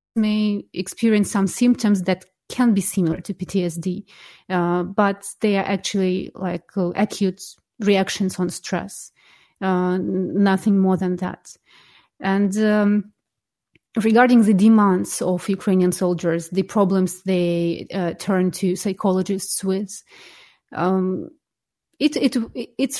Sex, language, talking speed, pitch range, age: female, English, 115 wpm, 185-210 Hz, 30-49